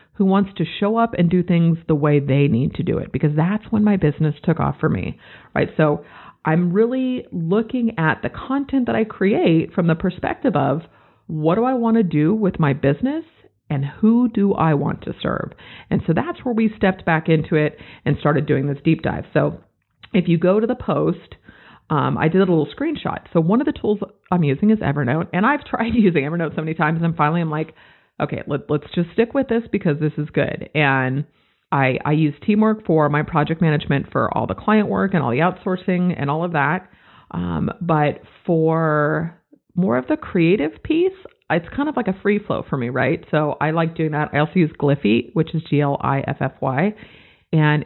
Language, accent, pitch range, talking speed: English, American, 150-210 Hz, 210 wpm